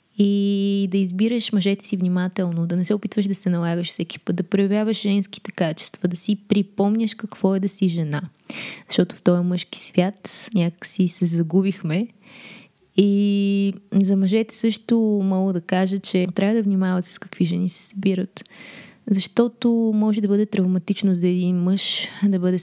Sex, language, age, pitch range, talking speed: female, Bulgarian, 20-39, 180-210 Hz, 160 wpm